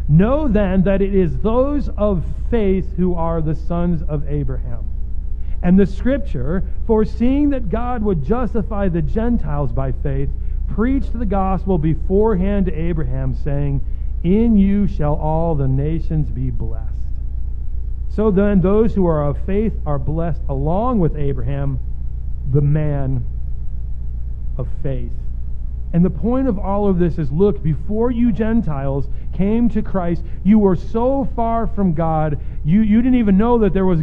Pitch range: 140-210 Hz